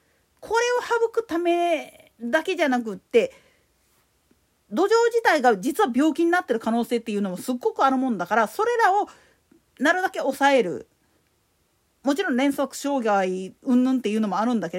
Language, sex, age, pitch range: Japanese, female, 40-59, 230-345 Hz